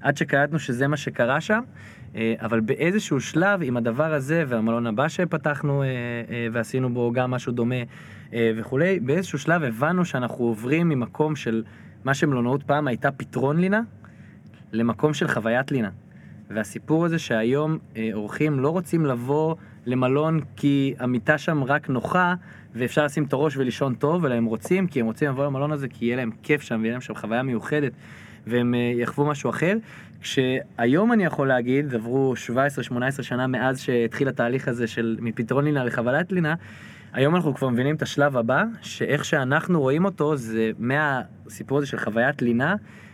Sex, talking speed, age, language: male, 155 wpm, 20-39, Hebrew